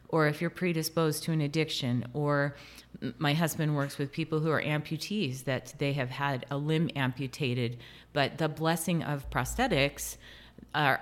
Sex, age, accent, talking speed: female, 30-49, American, 160 wpm